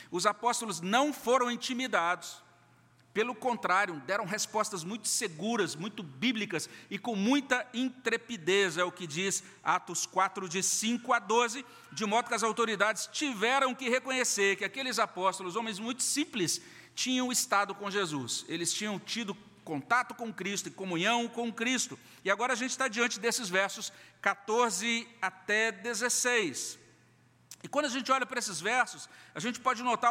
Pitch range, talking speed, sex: 195-250 Hz, 155 wpm, male